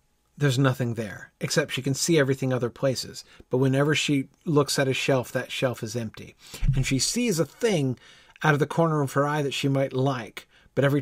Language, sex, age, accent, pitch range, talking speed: English, male, 50-69, American, 125-155 Hz, 210 wpm